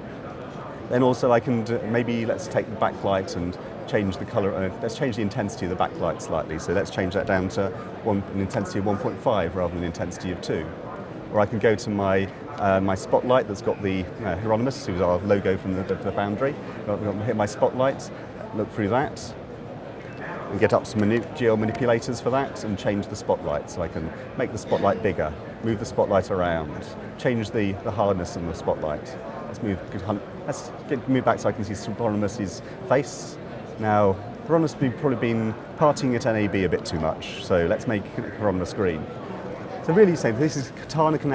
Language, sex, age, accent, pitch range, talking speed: English, male, 30-49, British, 100-125 Hz, 205 wpm